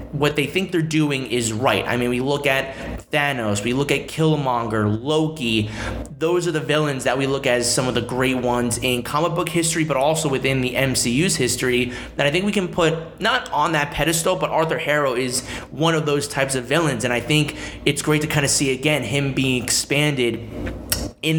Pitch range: 125-150 Hz